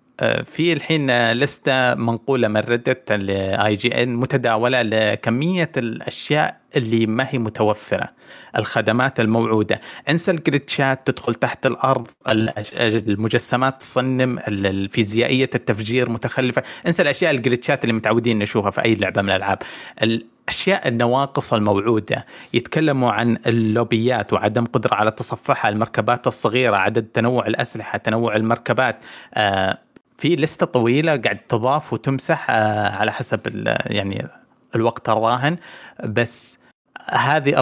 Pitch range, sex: 105-130 Hz, male